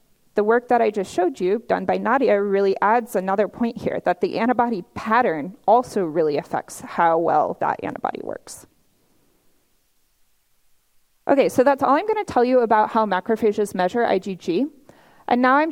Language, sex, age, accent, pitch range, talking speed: English, female, 30-49, American, 200-270 Hz, 170 wpm